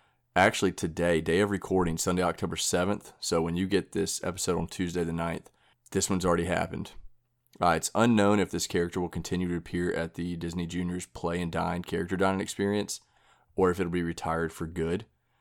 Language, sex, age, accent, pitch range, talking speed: English, male, 30-49, American, 85-100 Hz, 190 wpm